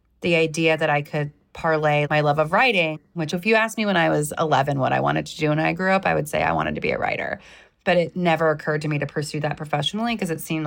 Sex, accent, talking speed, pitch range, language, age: female, American, 280 wpm, 150-180 Hz, English, 30-49